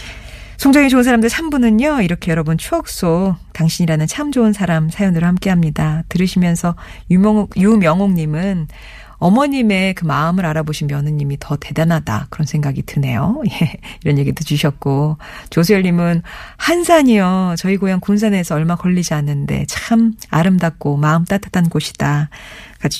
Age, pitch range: 40-59, 155-220 Hz